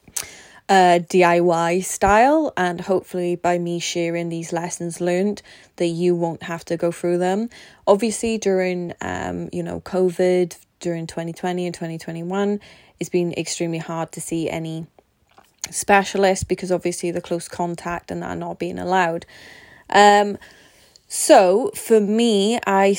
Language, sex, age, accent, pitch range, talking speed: English, female, 20-39, British, 170-195 Hz, 135 wpm